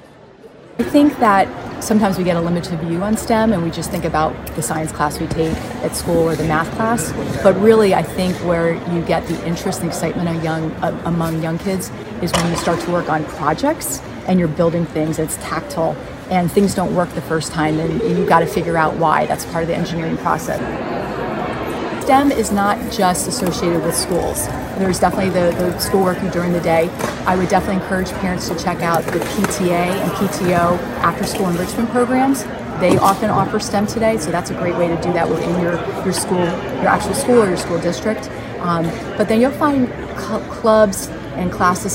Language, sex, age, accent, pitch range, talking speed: English, female, 30-49, American, 165-200 Hz, 195 wpm